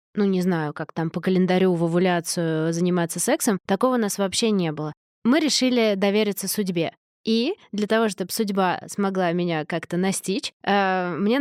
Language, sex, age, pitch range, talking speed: Russian, female, 20-39, 185-220 Hz, 165 wpm